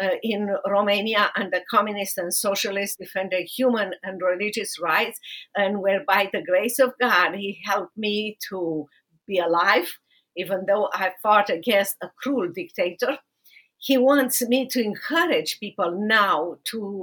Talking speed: 145 wpm